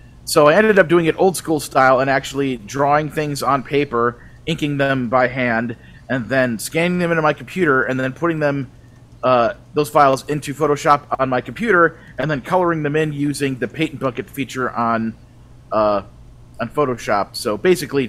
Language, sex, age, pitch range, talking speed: English, male, 30-49, 115-140 Hz, 180 wpm